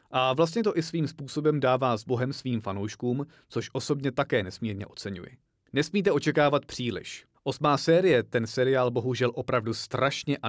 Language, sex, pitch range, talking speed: Czech, male, 115-145 Hz, 155 wpm